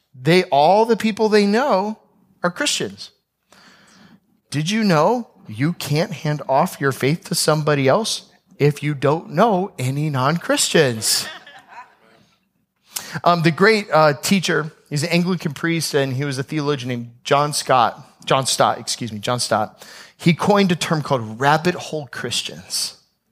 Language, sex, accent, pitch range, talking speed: English, male, American, 145-185 Hz, 145 wpm